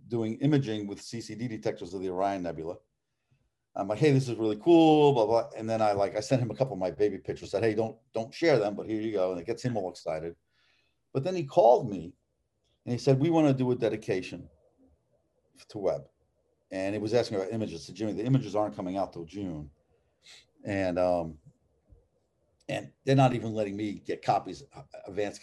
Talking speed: 210 wpm